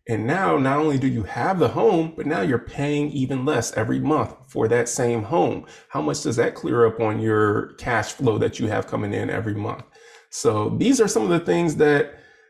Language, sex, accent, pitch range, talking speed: English, male, American, 110-150 Hz, 220 wpm